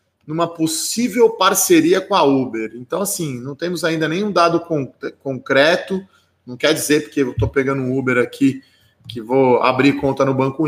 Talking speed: 170 wpm